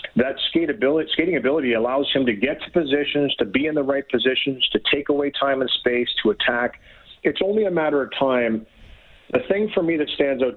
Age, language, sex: 40-59, English, male